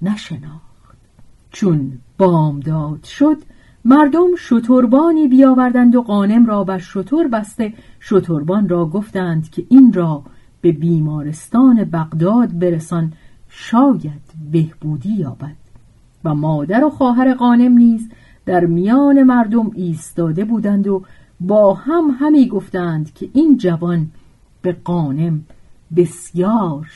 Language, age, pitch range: Persian, 40-59, 155-245 Hz